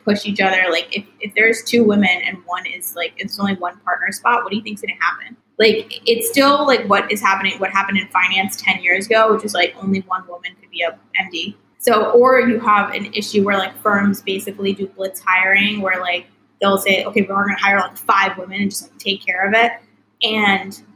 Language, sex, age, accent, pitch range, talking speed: English, female, 10-29, American, 190-220 Hz, 225 wpm